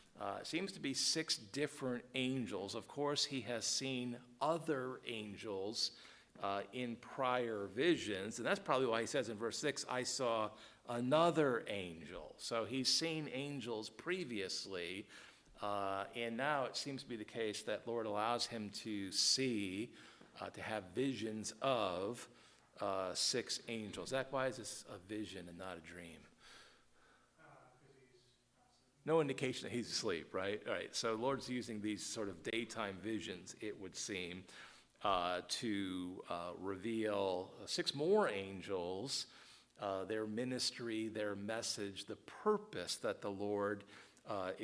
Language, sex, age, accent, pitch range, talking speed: English, male, 50-69, American, 105-130 Hz, 145 wpm